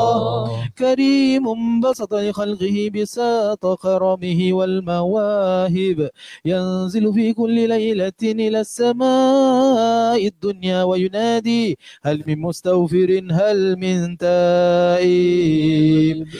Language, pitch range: Malay, 185-235 Hz